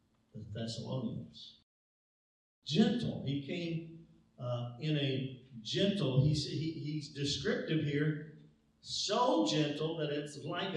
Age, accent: 50-69, American